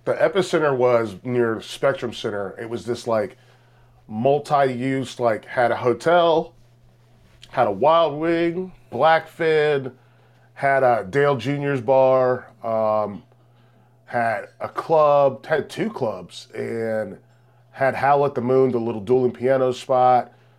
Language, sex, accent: English, male, American